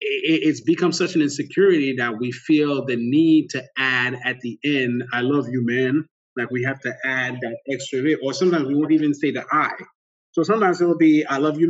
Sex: male